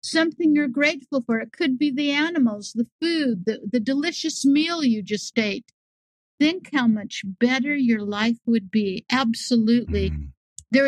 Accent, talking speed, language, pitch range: American, 155 wpm, English, 230-285 Hz